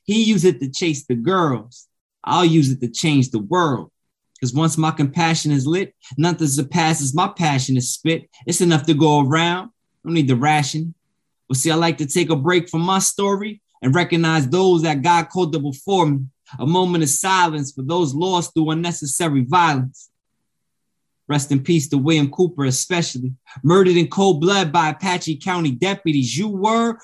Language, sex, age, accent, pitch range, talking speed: English, male, 20-39, American, 130-175 Hz, 180 wpm